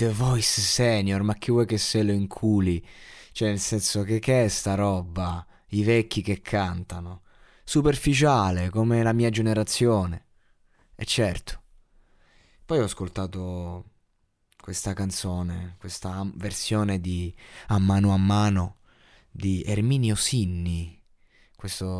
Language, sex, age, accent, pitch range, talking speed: Italian, male, 20-39, native, 95-115 Hz, 125 wpm